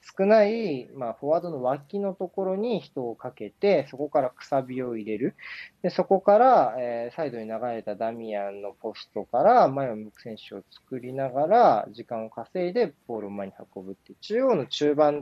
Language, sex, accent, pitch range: Japanese, male, native, 115-175 Hz